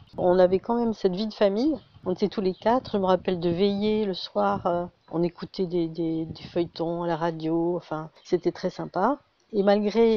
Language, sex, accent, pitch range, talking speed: French, female, French, 180-200 Hz, 220 wpm